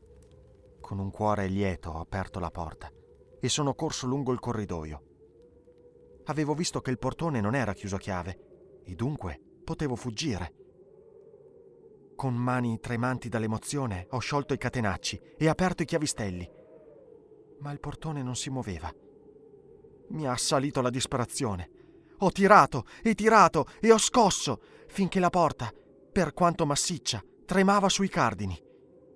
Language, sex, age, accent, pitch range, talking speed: Italian, male, 30-49, native, 115-170 Hz, 140 wpm